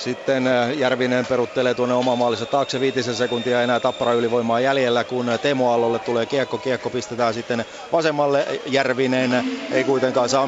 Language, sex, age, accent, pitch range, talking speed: Finnish, male, 30-49, native, 145-210 Hz, 135 wpm